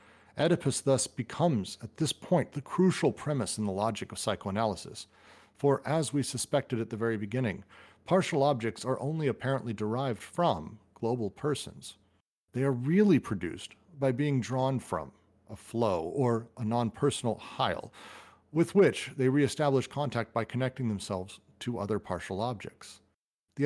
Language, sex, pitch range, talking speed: English, male, 105-140 Hz, 145 wpm